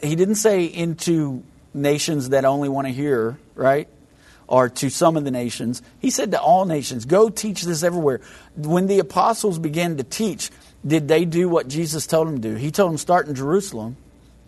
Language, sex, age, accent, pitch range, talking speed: English, male, 50-69, American, 130-170 Hz, 195 wpm